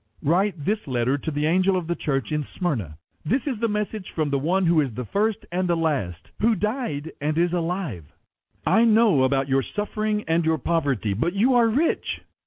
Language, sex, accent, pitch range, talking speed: English, male, American, 135-210 Hz, 200 wpm